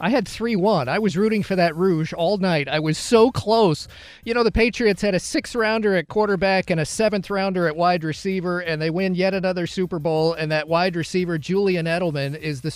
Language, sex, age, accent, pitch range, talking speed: English, male, 40-59, American, 155-190 Hz, 220 wpm